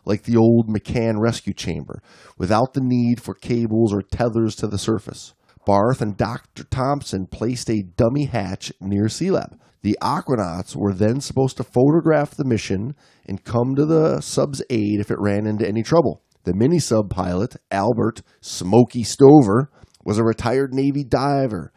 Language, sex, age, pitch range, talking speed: English, male, 30-49, 105-130 Hz, 165 wpm